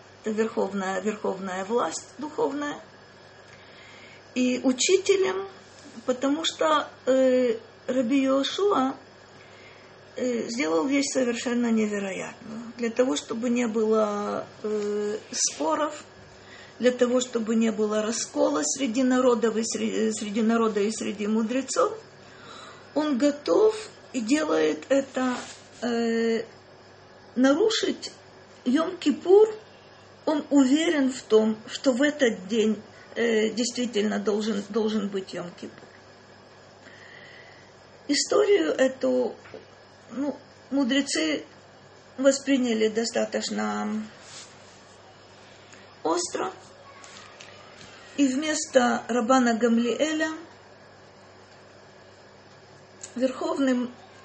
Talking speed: 80 wpm